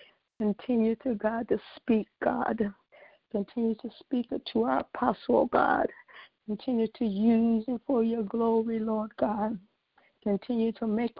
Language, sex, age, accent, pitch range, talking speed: English, female, 60-79, American, 210-240 Hz, 140 wpm